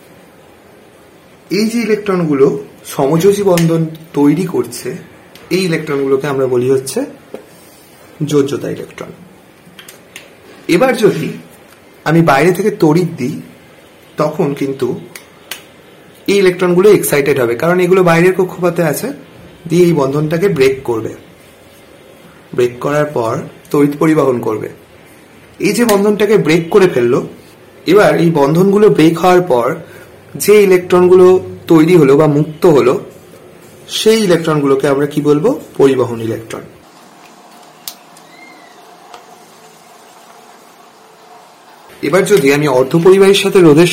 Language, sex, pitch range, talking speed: Bengali, male, 145-185 Hz, 95 wpm